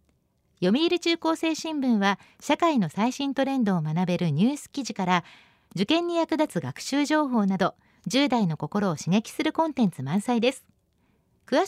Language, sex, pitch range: Japanese, female, 185-295 Hz